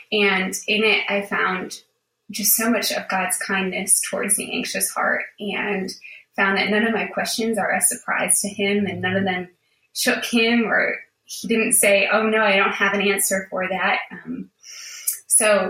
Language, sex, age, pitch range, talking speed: English, female, 20-39, 190-220 Hz, 185 wpm